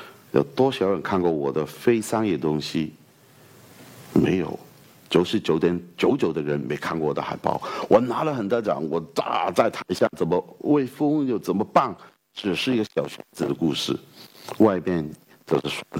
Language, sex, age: Chinese, male, 60-79